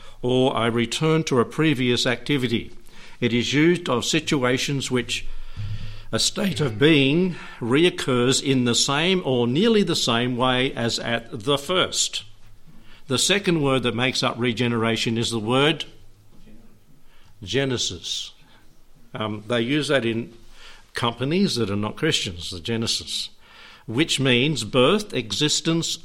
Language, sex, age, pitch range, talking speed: English, male, 60-79, 115-150 Hz, 130 wpm